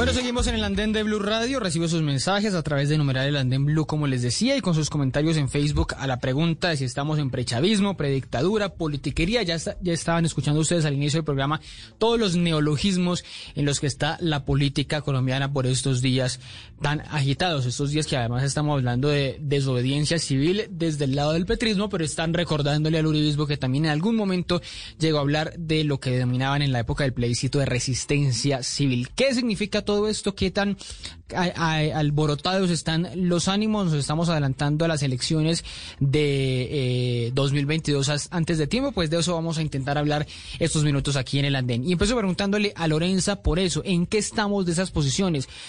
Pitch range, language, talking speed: 140-170 Hz, English, 200 wpm